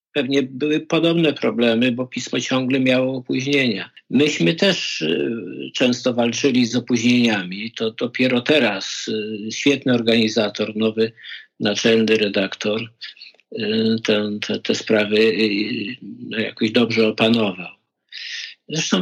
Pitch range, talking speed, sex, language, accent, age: 110-135 Hz, 100 wpm, male, Polish, native, 50-69